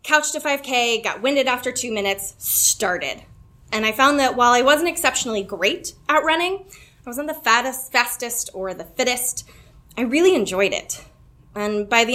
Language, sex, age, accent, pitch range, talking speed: English, female, 20-39, American, 195-250 Hz, 170 wpm